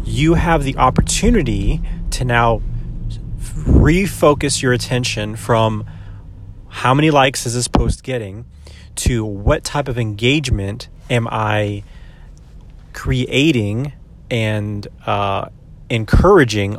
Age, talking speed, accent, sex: 30-49, 100 wpm, American, male